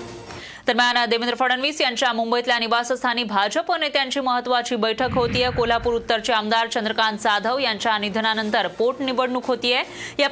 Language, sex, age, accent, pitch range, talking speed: Marathi, female, 30-49, native, 215-250 Hz, 120 wpm